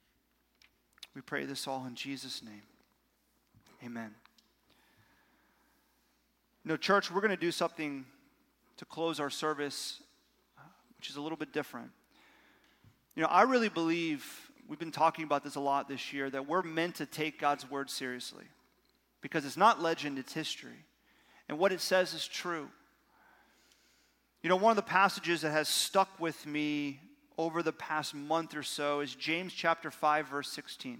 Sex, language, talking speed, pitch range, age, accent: male, English, 160 wpm, 145-190 Hz, 30-49, American